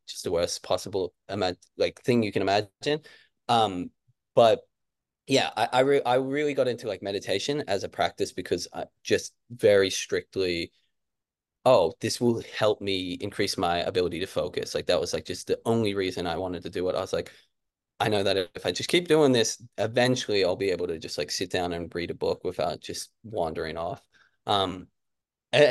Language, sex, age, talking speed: English, male, 20-39, 195 wpm